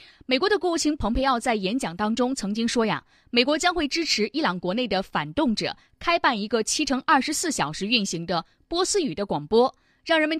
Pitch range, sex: 200-285 Hz, female